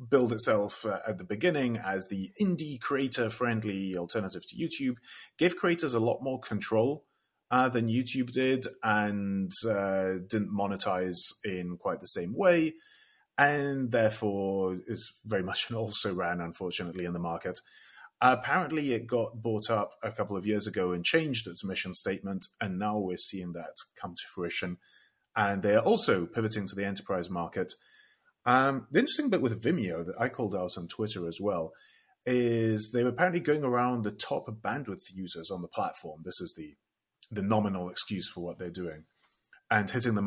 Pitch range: 95-135 Hz